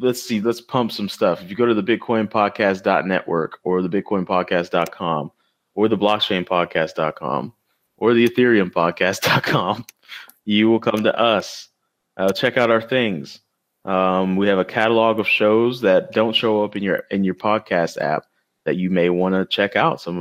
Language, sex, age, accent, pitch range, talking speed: English, male, 20-39, American, 90-110 Hz, 180 wpm